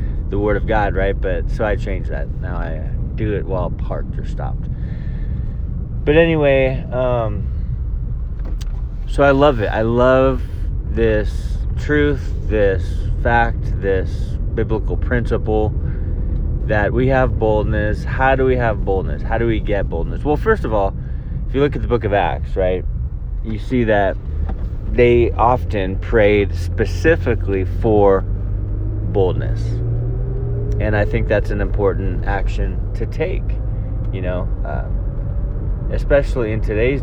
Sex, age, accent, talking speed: male, 30-49, American, 135 wpm